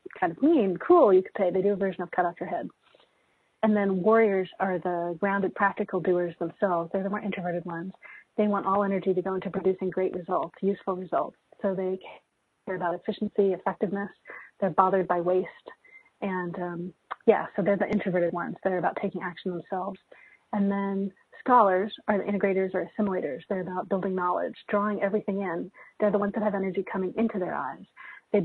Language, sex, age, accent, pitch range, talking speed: English, female, 30-49, American, 185-210 Hz, 190 wpm